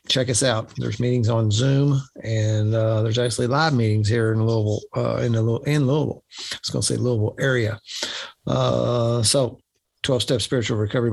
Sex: male